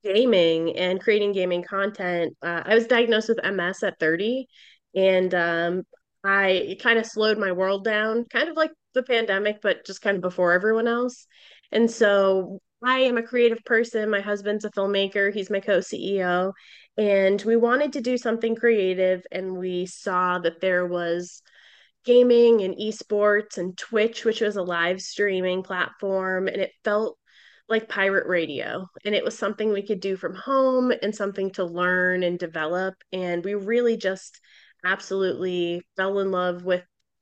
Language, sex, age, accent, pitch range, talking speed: English, female, 20-39, American, 185-220 Hz, 165 wpm